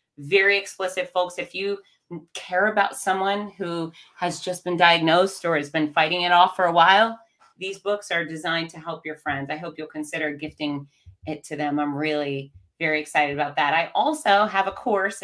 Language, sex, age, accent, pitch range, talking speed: English, female, 30-49, American, 155-200 Hz, 195 wpm